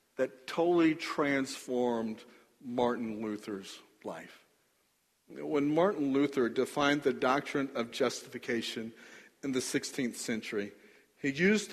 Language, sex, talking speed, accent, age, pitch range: English, male, 100 wpm, American, 50-69, 120-170 Hz